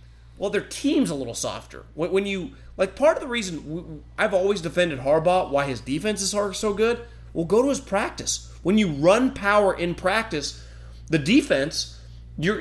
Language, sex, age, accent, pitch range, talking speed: English, male, 30-49, American, 140-210 Hz, 180 wpm